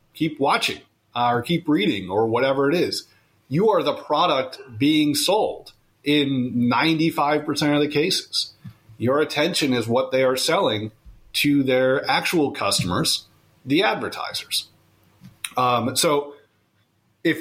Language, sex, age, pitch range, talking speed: English, male, 30-49, 125-160 Hz, 130 wpm